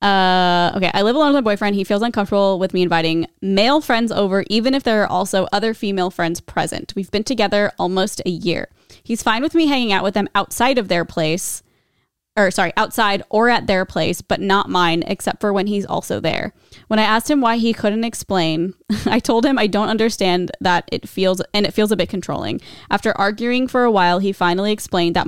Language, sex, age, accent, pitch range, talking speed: English, female, 20-39, American, 185-225 Hz, 220 wpm